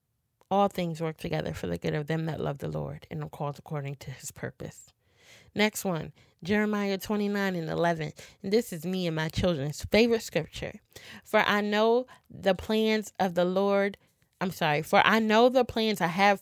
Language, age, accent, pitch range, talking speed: English, 20-39, American, 160-200 Hz, 190 wpm